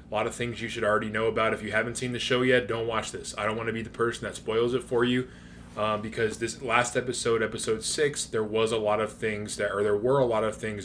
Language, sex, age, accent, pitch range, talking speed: English, male, 20-39, American, 105-120 Hz, 280 wpm